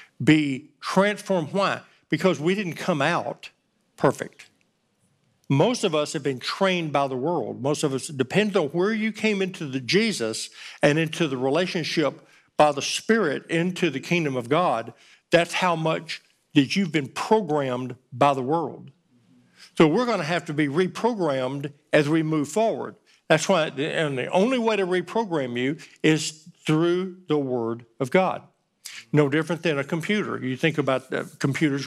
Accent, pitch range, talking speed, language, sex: American, 145-185 Hz, 165 wpm, English, male